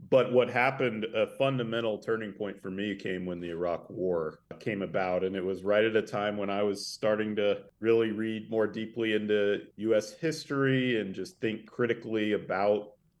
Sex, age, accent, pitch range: male, 40-59, American, 95-110 Hz